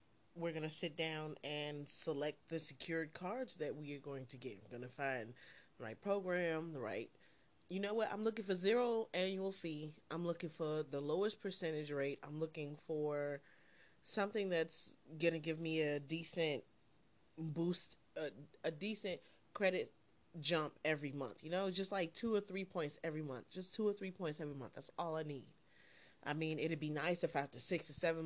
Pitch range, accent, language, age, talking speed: 150-190 Hz, American, English, 30-49, 195 wpm